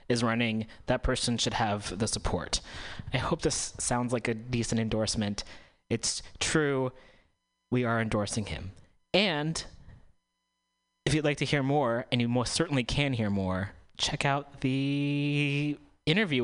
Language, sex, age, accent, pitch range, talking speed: English, male, 20-39, American, 105-140 Hz, 145 wpm